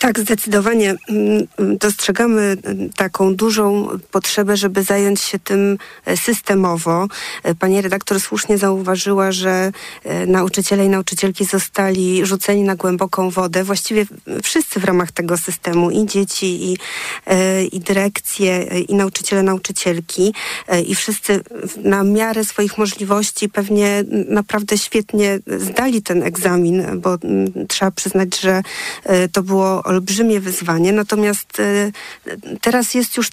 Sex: female